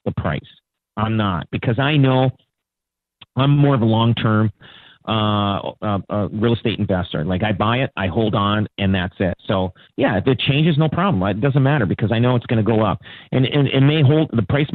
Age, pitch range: 40-59, 110-140 Hz